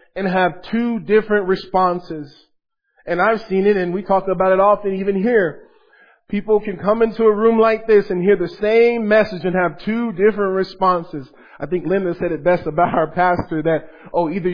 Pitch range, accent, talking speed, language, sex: 165-210 Hz, American, 195 wpm, English, male